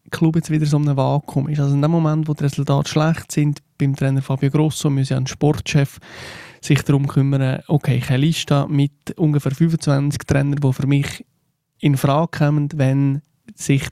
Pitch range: 140-160 Hz